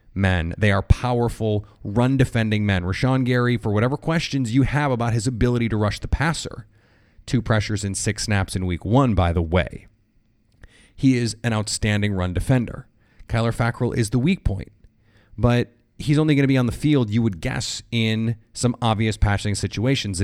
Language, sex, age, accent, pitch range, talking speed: English, male, 30-49, American, 105-125 Hz, 180 wpm